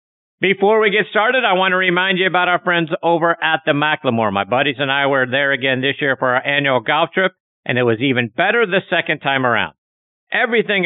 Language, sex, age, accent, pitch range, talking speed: English, male, 50-69, American, 140-185 Hz, 220 wpm